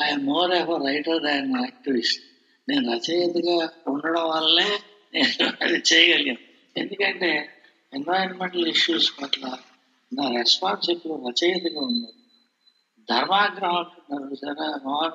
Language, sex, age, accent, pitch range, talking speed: Telugu, male, 60-79, native, 145-205 Hz, 140 wpm